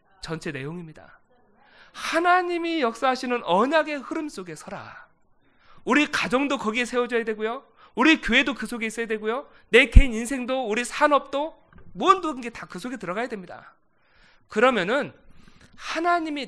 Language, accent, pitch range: Korean, native, 200-295 Hz